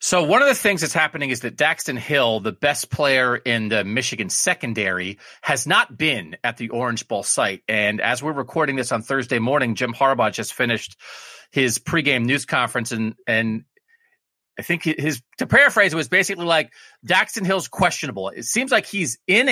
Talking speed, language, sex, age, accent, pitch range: 190 wpm, English, male, 30-49, American, 120-175 Hz